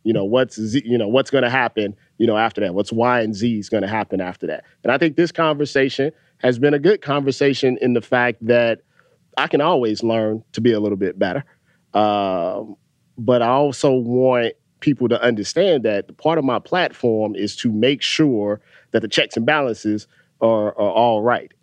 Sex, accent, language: male, American, English